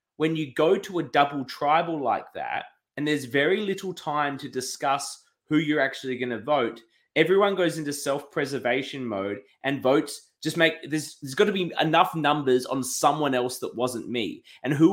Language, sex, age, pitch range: English, male, 20-39, 130-175 Hz